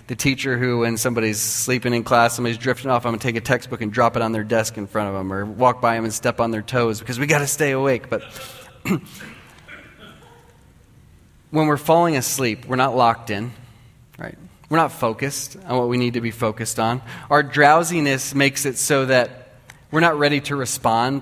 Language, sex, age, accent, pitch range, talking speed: English, male, 30-49, American, 120-140 Hz, 205 wpm